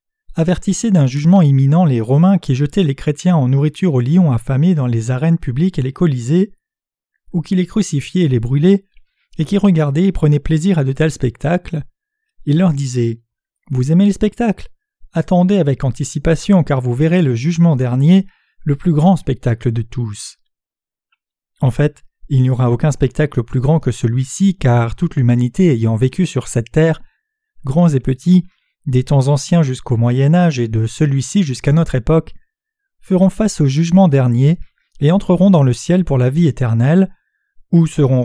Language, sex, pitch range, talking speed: French, male, 130-180 Hz, 175 wpm